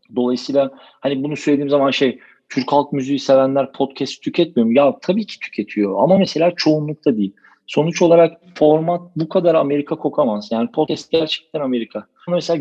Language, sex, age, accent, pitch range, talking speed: Turkish, male, 40-59, native, 130-165 Hz, 155 wpm